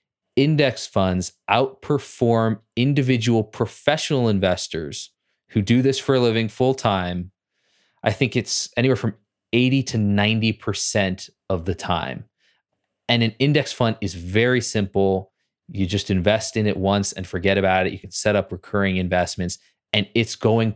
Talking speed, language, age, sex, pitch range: 145 wpm, English, 20-39, male, 95-115 Hz